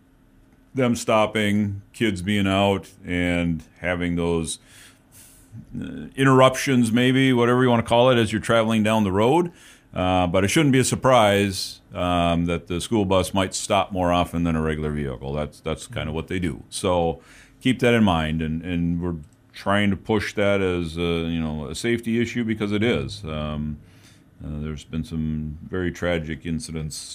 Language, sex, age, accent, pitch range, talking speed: English, male, 40-59, American, 80-110 Hz, 170 wpm